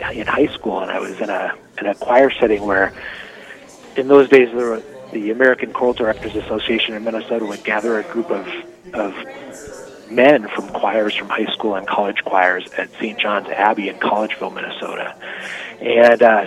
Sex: male